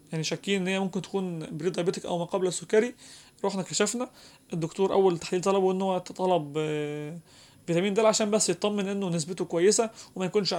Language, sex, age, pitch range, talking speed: Arabic, male, 20-39, 165-195 Hz, 165 wpm